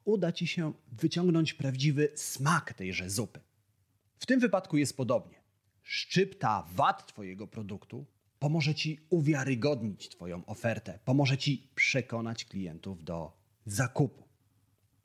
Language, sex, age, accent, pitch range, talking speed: Polish, male, 30-49, native, 105-150 Hz, 110 wpm